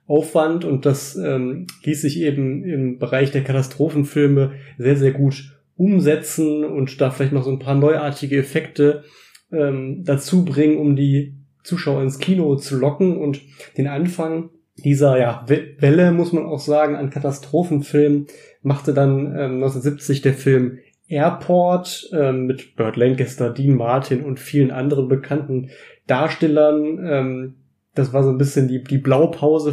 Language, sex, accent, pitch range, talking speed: German, male, German, 135-150 Hz, 145 wpm